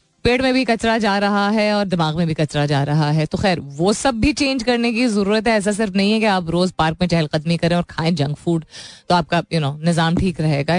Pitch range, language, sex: 170-225 Hz, Hindi, female